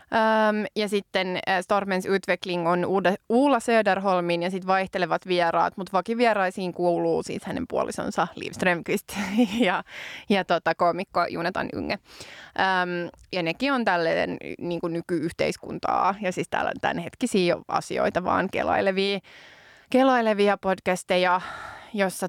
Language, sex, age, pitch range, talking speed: Finnish, female, 20-39, 175-210 Hz, 120 wpm